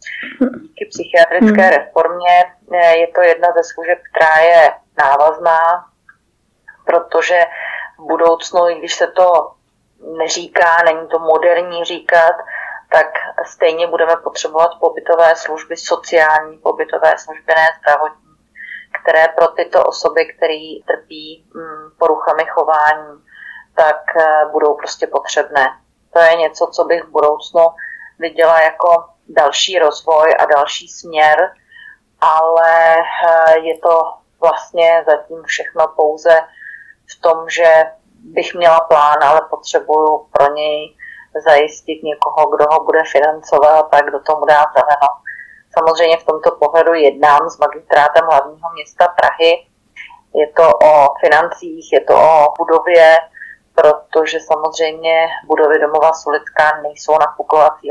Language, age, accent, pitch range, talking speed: Czech, 30-49, native, 155-170 Hz, 115 wpm